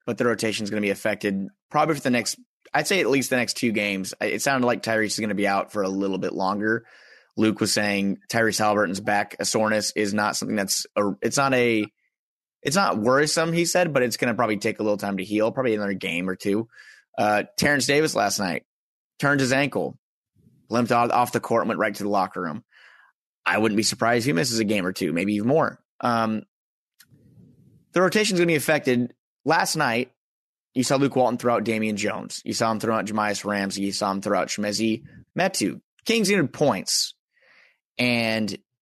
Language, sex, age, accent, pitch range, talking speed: English, male, 30-49, American, 105-135 Hz, 220 wpm